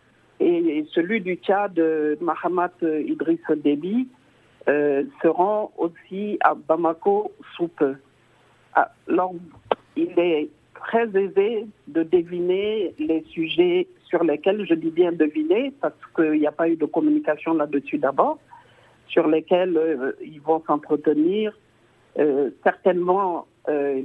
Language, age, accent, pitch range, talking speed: French, 50-69, French, 150-195 Hz, 120 wpm